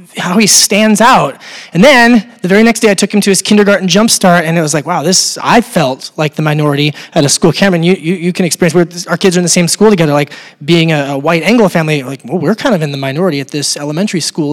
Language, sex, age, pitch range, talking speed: English, male, 30-49, 175-205 Hz, 270 wpm